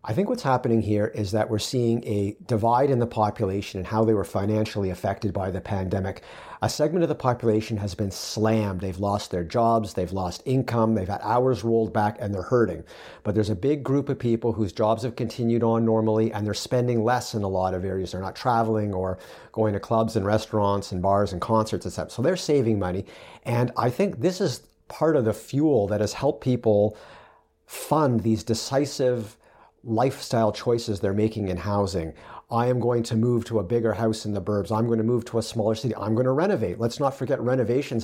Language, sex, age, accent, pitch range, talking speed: English, male, 50-69, American, 105-120 Hz, 215 wpm